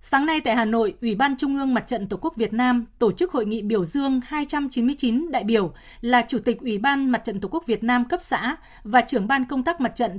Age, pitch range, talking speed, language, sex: 20-39, 225-275 Hz, 260 wpm, Vietnamese, female